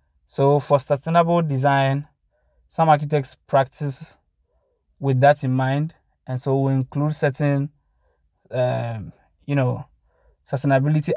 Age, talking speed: 20-39, 105 wpm